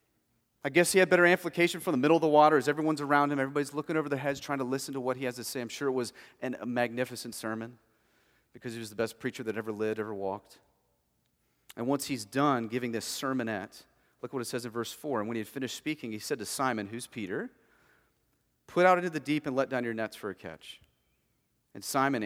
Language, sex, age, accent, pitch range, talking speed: English, male, 40-59, American, 115-175 Hz, 240 wpm